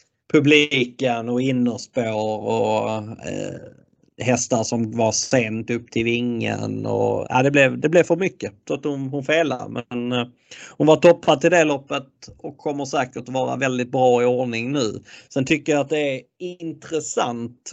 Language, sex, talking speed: Swedish, male, 145 wpm